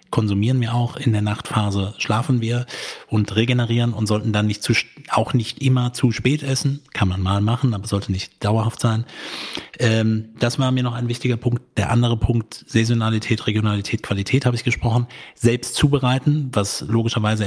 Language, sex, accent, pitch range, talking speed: German, male, German, 110-130 Hz, 175 wpm